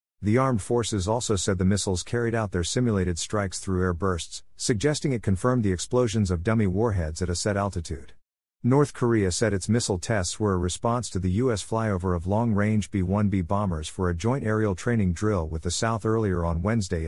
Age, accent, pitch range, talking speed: 50-69, American, 90-115 Hz, 195 wpm